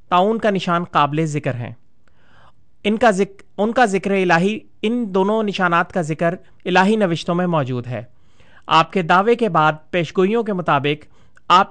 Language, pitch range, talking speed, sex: Urdu, 155-195 Hz, 165 wpm, male